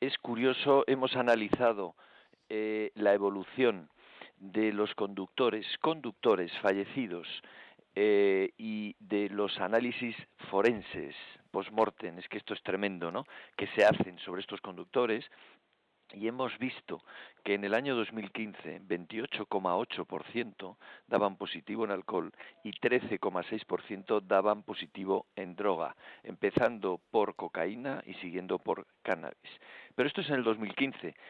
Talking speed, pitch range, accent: 120 wpm, 100-125 Hz, Spanish